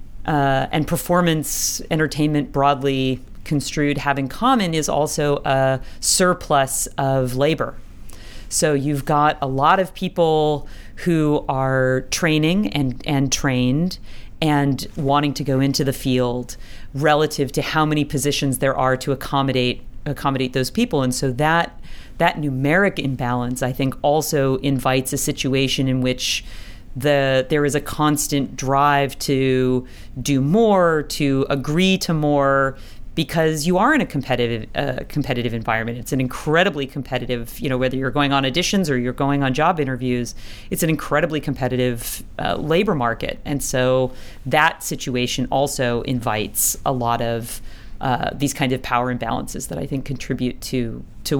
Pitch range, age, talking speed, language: 125-150 Hz, 40-59, 150 wpm, English